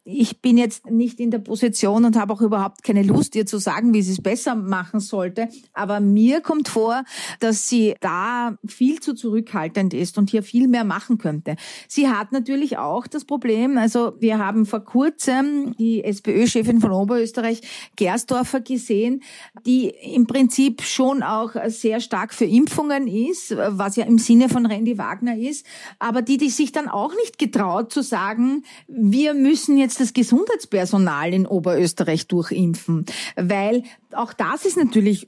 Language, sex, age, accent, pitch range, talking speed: German, female, 40-59, Austrian, 205-250 Hz, 165 wpm